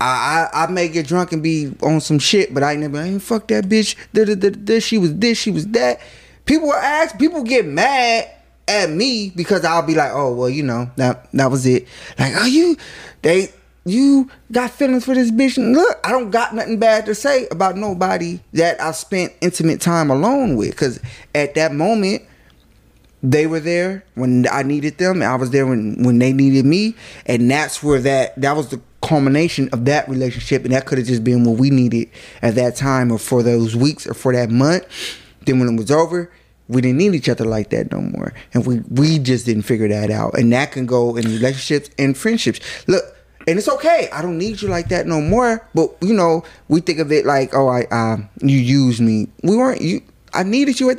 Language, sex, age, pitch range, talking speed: English, male, 20-39, 130-210 Hz, 220 wpm